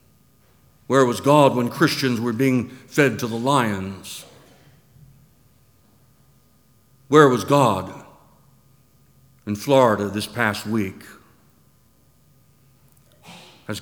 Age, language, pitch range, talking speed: 60-79, English, 115-135 Hz, 85 wpm